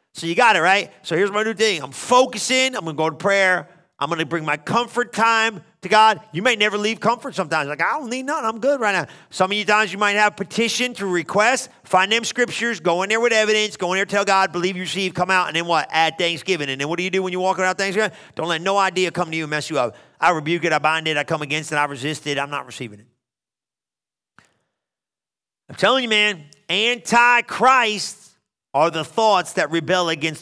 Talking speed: 245 wpm